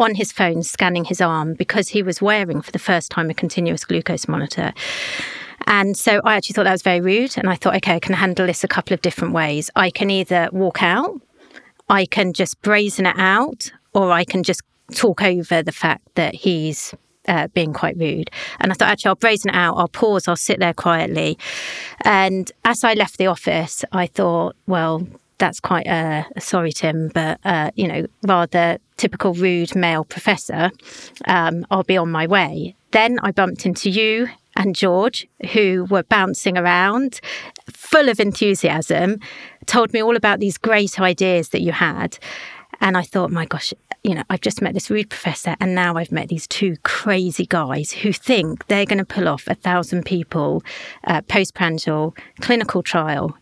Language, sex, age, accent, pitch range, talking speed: English, female, 40-59, British, 170-205 Hz, 190 wpm